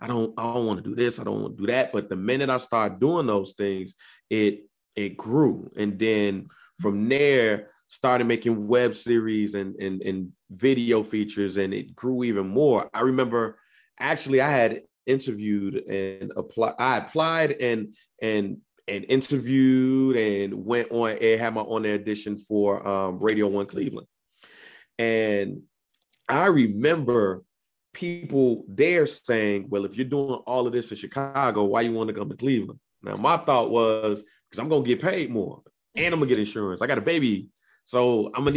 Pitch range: 100-130 Hz